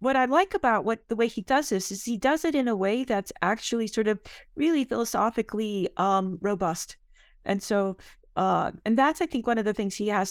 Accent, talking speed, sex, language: American, 220 wpm, female, English